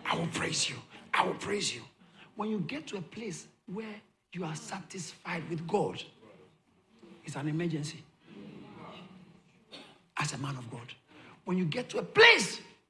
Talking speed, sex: 160 wpm, male